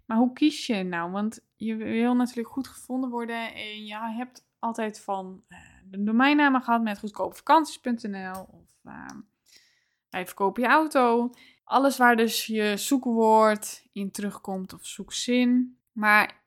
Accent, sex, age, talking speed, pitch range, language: Dutch, female, 10-29, 140 wpm, 205-245 Hz, Dutch